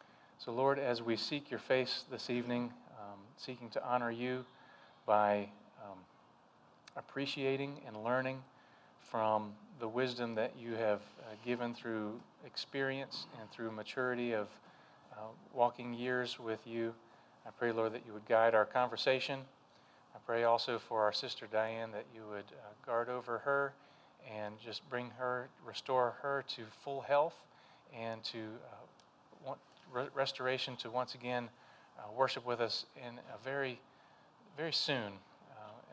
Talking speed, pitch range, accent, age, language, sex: 145 wpm, 115-130 Hz, American, 30-49, English, male